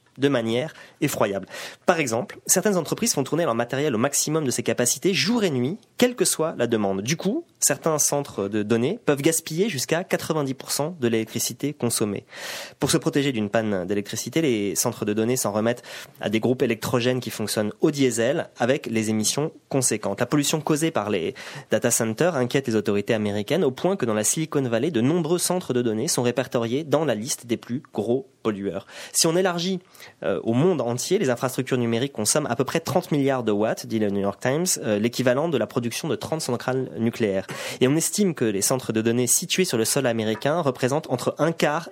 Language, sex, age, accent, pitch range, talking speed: French, male, 20-39, French, 115-155 Hz, 200 wpm